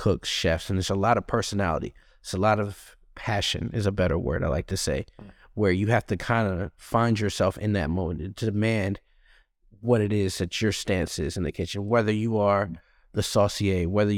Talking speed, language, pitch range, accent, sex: 210 wpm, English, 95-110 Hz, American, male